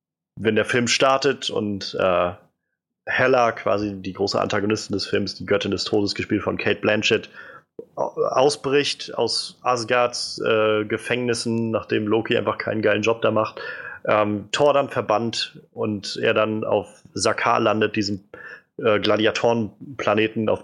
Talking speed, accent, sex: 140 wpm, German, male